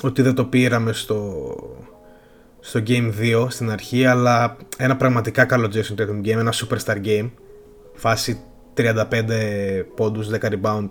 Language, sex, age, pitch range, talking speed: Greek, male, 20-39, 110-130 Hz, 140 wpm